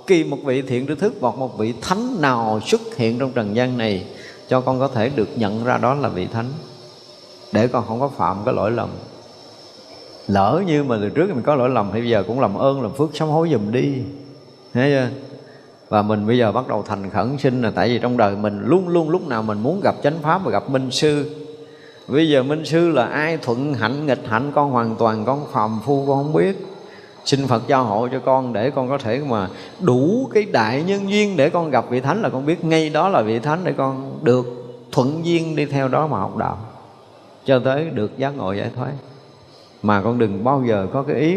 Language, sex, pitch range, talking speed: Vietnamese, male, 115-150 Hz, 235 wpm